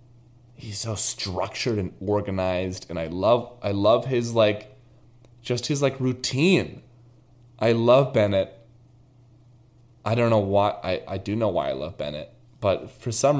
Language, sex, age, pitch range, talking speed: English, male, 20-39, 105-125 Hz, 150 wpm